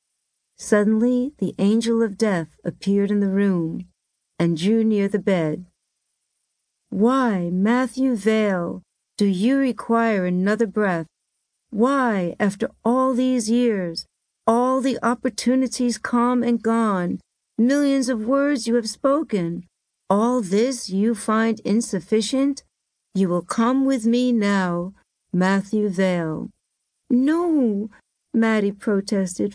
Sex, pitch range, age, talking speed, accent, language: female, 195-240 Hz, 60-79, 110 wpm, American, English